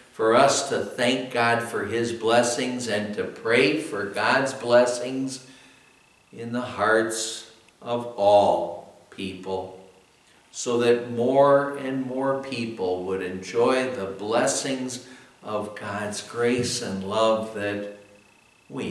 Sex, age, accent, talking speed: male, 60-79, American, 115 wpm